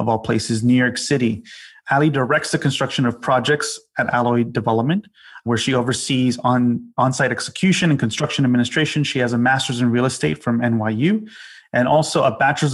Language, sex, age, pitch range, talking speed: English, male, 30-49, 120-135 Hz, 175 wpm